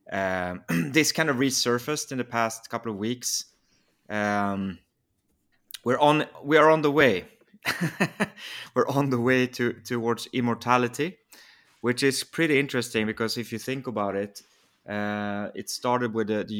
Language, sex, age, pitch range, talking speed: English, male, 30-49, 100-120 Hz, 150 wpm